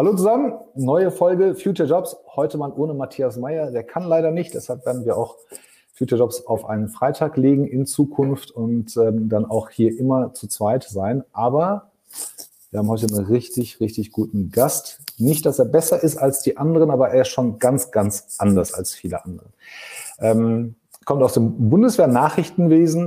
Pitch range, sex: 110-140 Hz, male